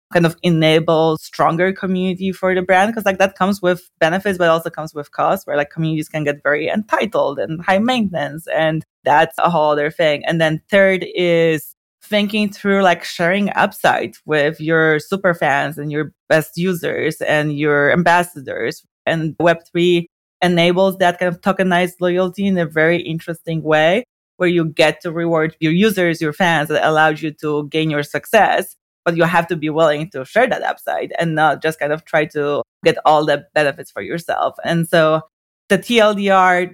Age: 20-39